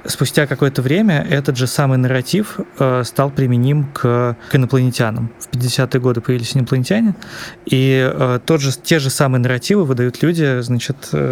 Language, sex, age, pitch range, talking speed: Russian, male, 20-39, 120-145 Hz, 145 wpm